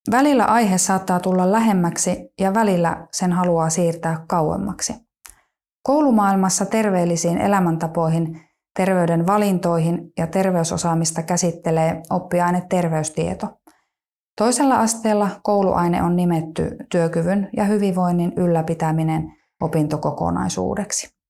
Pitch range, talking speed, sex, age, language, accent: 160-200 Hz, 85 wpm, female, 20-39, Finnish, native